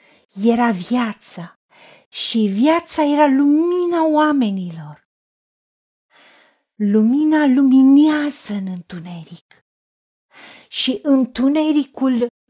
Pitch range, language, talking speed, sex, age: 195-280 Hz, Romanian, 60 wpm, female, 40-59